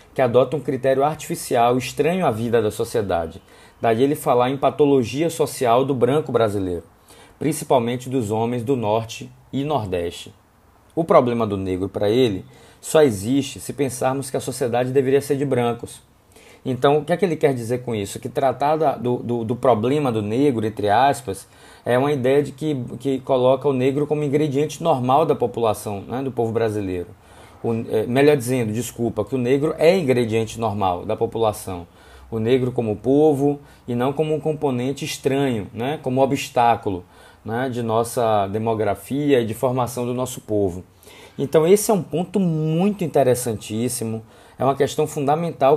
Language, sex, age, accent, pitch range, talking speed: Portuguese, male, 20-39, Brazilian, 110-145 Hz, 165 wpm